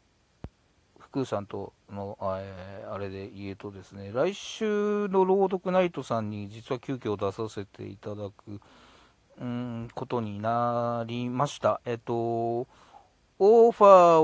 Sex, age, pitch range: male, 40-59, 105-135 Hz